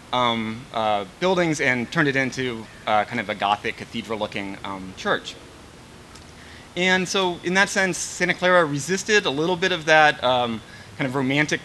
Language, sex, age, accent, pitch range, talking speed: English, male, 30-49, American, 115-150 Hz, 165 wpm